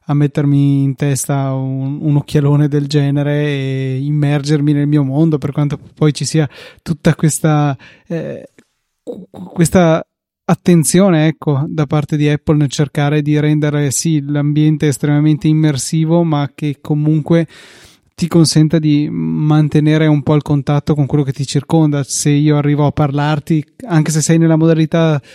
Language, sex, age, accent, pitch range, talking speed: Italian, male, 20-39, native, 145-165 Hz, 145 wpm